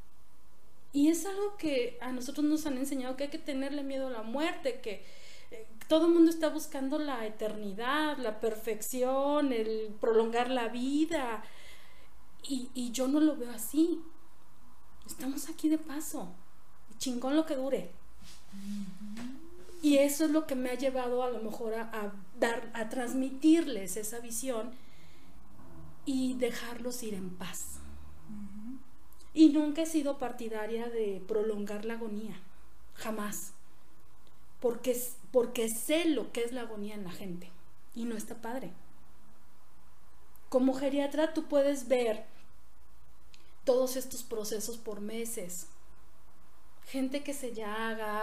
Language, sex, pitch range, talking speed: Spanish, female, 215-275 Hz, 135 wpm